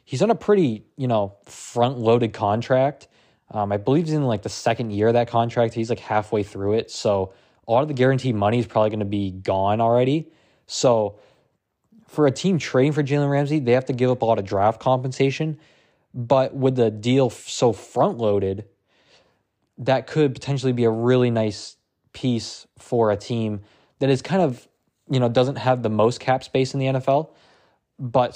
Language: English